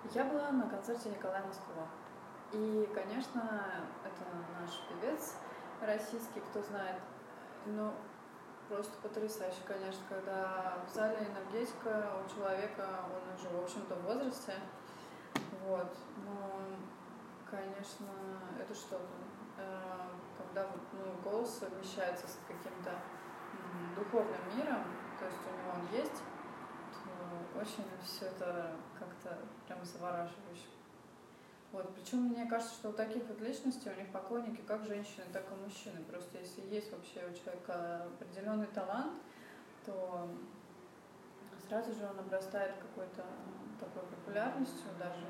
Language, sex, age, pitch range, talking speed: Russian, female, 20-39, 185-215 Hz, 115 wpm